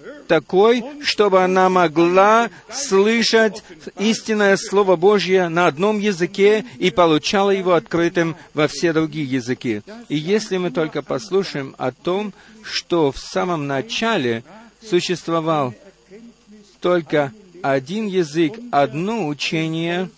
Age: 50-69